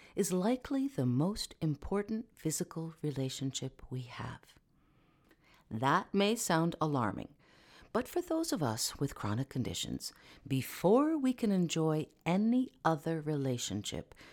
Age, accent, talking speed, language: 50-69, American, 115 wpm, English